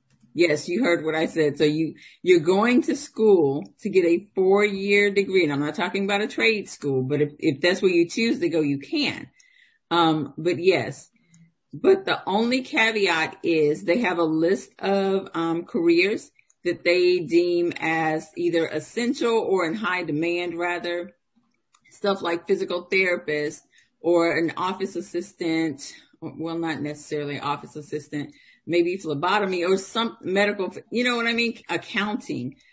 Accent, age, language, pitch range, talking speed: American, 50-69, English, 155-200 Hz, 160 wpm